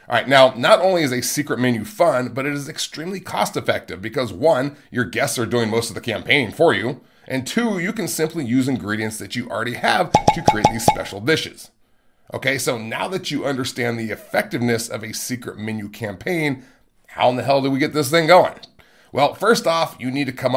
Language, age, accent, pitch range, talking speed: English, 30-49, American, 115-145 Hz, 215 wpm